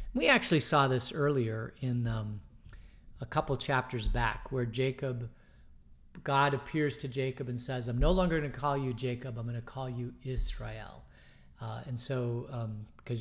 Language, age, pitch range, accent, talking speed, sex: English, 40-59, 120-150 Hz, American, 170 wpm, male